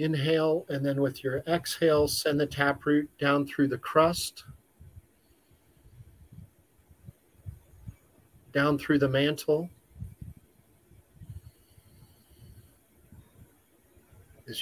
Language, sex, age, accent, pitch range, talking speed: English, male, 50-69, American, 120-155 Hz, 75 wpm